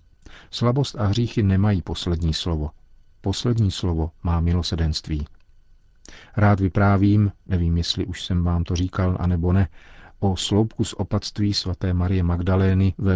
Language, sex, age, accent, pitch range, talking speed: Czech, male, 50-69, native, 85-100 Hz, 130 wpm